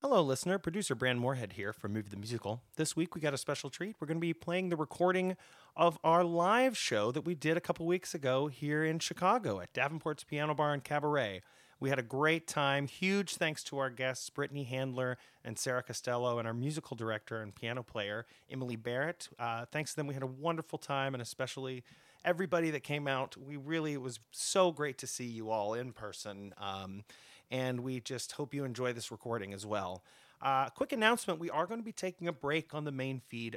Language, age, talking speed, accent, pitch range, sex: English, 30-49, 215 wpm, American, 120-160 Hz, male